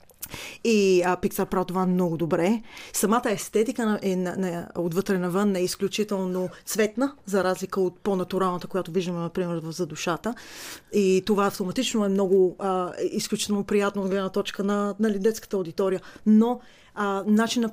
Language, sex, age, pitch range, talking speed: Bulgarian, female, 30-49, 180-210 Hz, 155 wpm